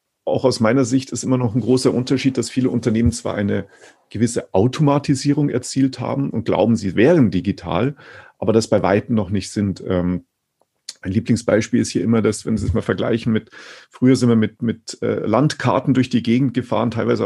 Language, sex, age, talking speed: German, male, 40-59, 190 wpm